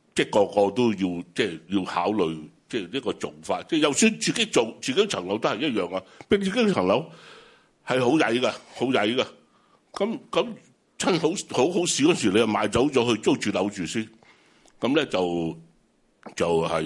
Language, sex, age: Chinese, male, 60-79